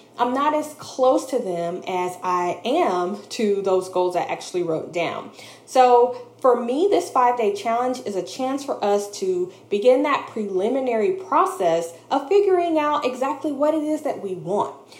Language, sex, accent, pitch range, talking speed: English, female, American, 185-275 Hz, 170 wpm